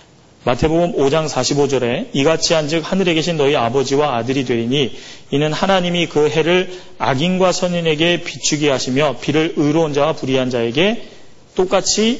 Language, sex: Korean, male